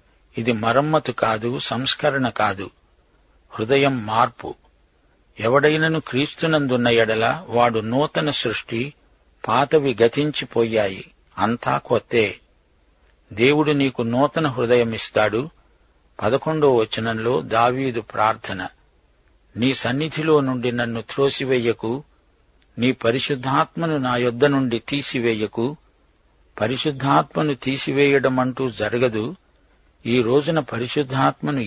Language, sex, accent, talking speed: Telugu, male, native, 80 wpm